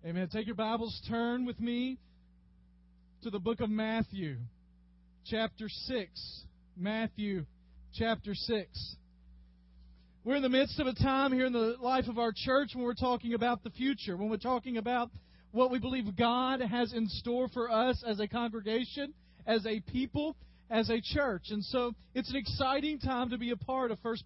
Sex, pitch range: male, 210-255 Hz